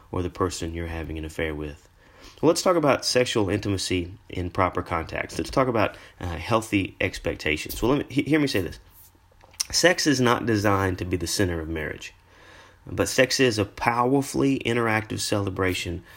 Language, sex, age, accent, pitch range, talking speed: English, male, 30-49, American, 90-115 Hz, 180 wpm